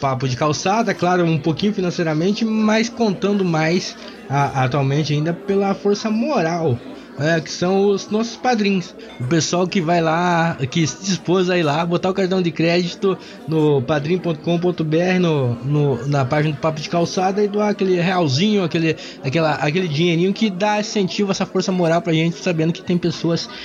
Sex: male